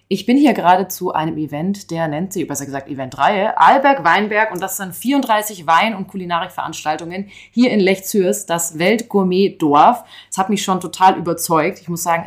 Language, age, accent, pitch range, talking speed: German, 30-49, German, 165-220 Hz, 170 wpm